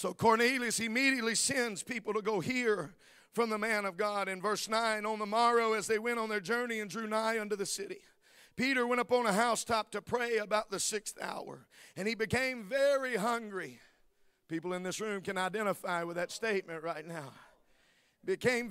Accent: American